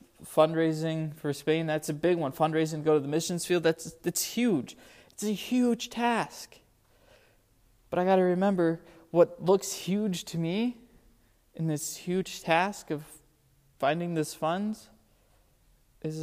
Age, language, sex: 20-39, English, male